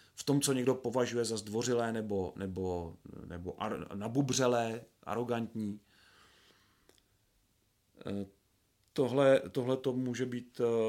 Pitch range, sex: 105-135 Hz, male